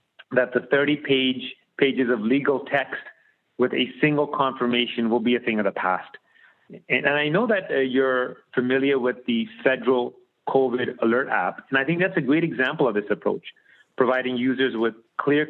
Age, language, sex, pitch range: 30-49, English, male, 120-140 Hz